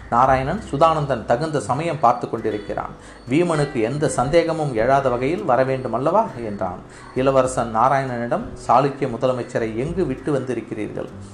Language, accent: Tamil, native